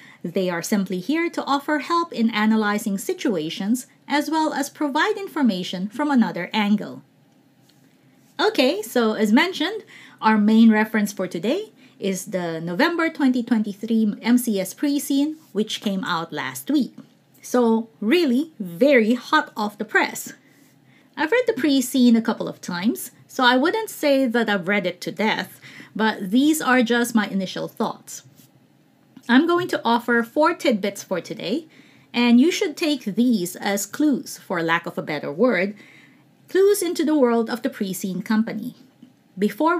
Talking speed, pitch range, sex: 150 wpm, 210-290 Hz, female